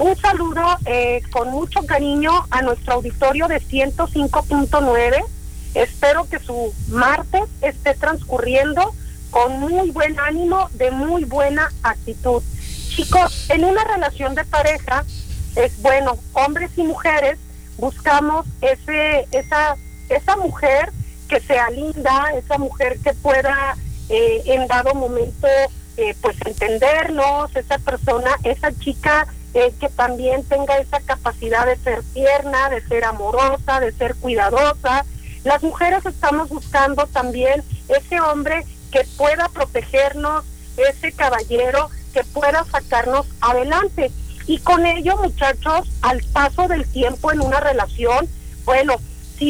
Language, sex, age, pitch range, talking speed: Spanish, female, 40-59, 270-335 Hz, 125 wpm